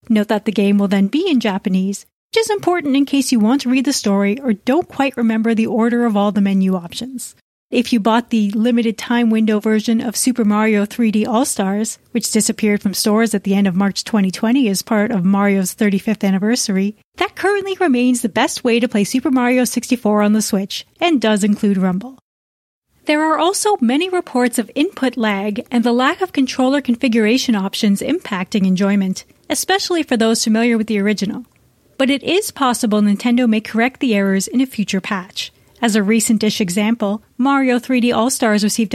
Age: 30-49